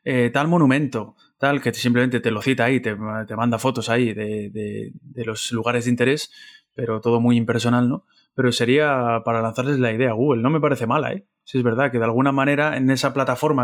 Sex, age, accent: male, 20-39, Spanish